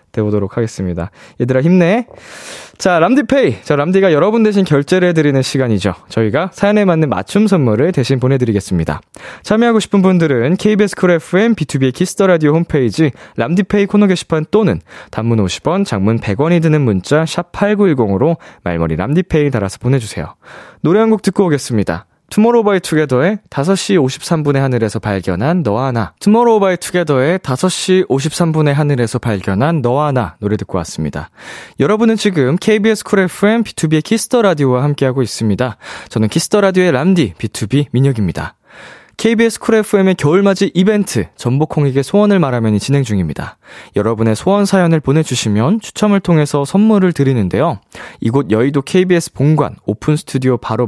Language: Korean